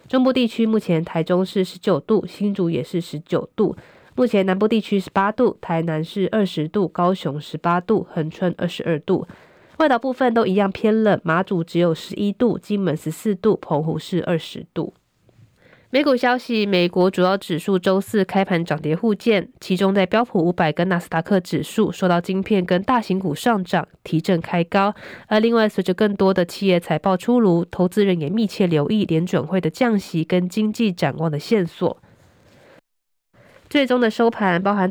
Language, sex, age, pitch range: Chinese, female, 20-39, 170-205 Hz